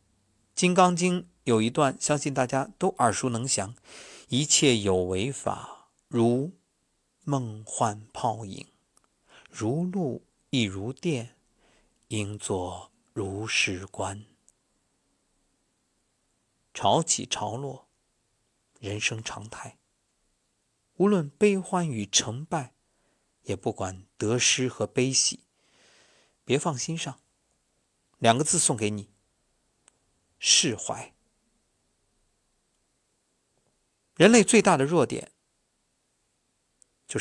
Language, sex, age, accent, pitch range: Chinese, male, 50-69, native, 105-155 Hz